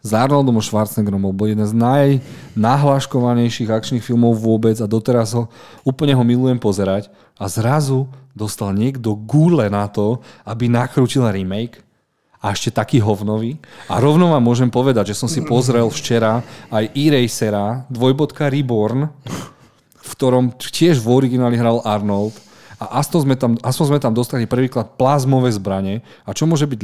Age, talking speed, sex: 40-59, 145 wpm, male